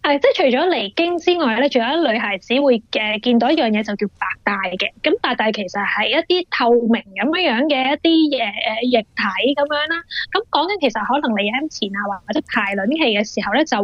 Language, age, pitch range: Chinese, 20-39, 225-310 Hz